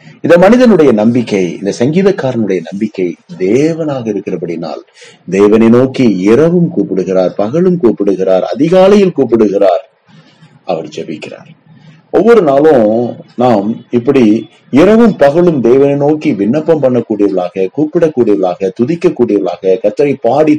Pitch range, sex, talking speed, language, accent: 105-175 Hz, male, 95 wpm, Tamil, native